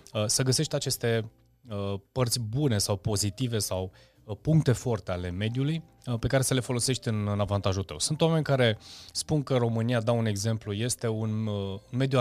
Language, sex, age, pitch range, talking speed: Romanian, male, 20-39, 100-130 Hz, 155 wpm